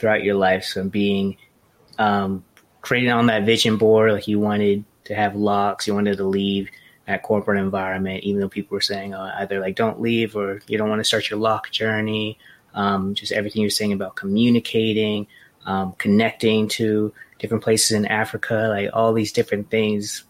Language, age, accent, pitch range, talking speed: English, 20-39, American, 100-115 Hz, 185 wpm